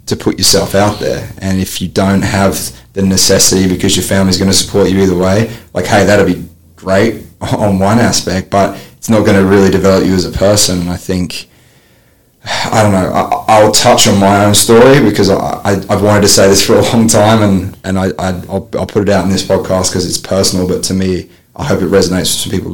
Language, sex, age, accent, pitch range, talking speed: English, male, 20-39, Australian, 95-105 Hz, 235 wpm